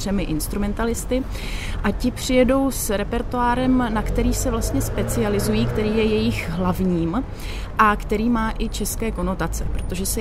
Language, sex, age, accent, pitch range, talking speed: Czech, female, 30-49, native, 180-215 Hz, 135 wpm